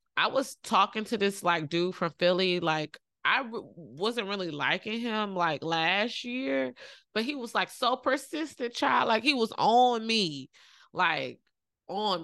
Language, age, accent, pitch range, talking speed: English, 20-39, American, 175-220 Hz, 160 wpm